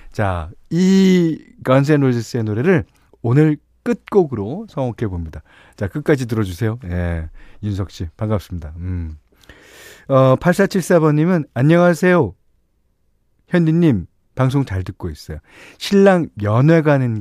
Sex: male